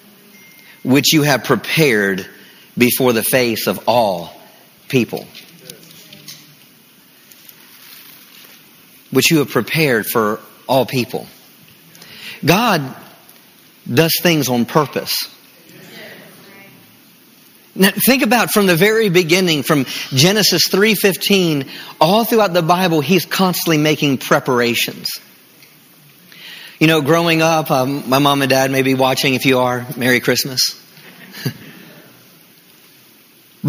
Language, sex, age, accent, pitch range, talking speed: English, male, 40-59, American, 135-180 Hz, 100 wpm